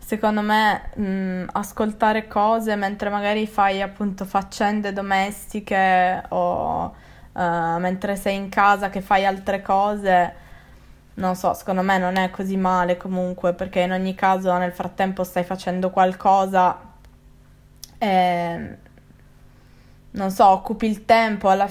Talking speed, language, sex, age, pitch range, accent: 120 wpm, Italian, female, 20-39, 180-195 Hz, native